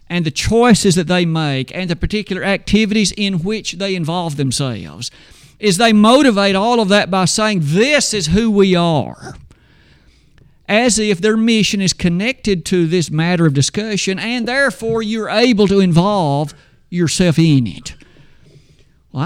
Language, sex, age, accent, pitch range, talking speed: English, male, 50-69, American, 145-200 Hz, 155 wpm